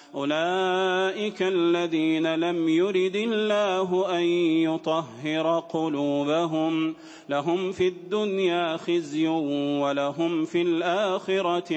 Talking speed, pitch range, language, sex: 75 wpm, 160-195 Hz, English, male